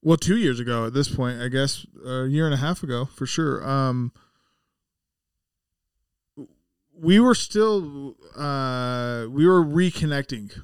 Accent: American